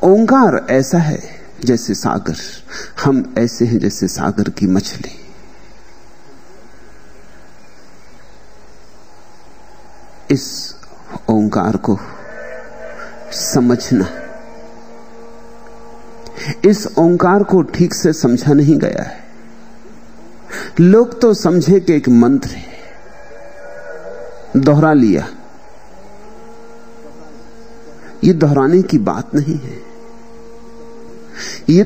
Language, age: Hindi, 60-79